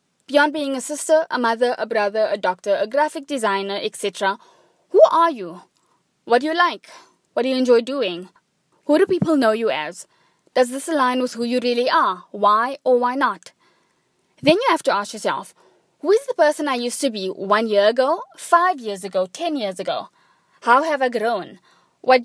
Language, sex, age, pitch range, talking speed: English, female, 20-39, 220-290 Hz, 195 wpm